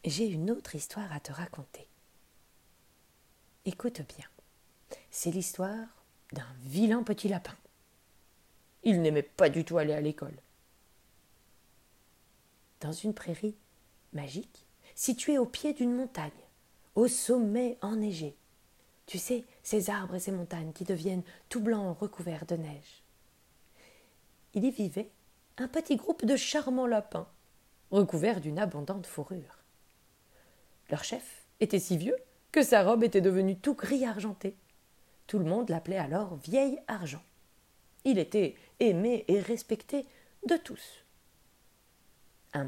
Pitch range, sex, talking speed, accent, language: 170-240 Hz, female, 125 wpm, French, French